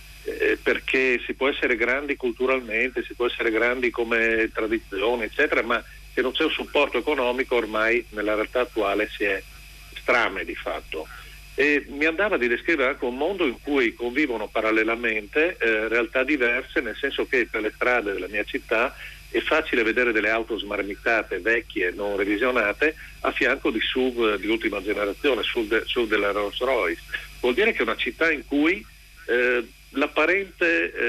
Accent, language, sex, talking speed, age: native, Italian, male, 165 wpm, 50-69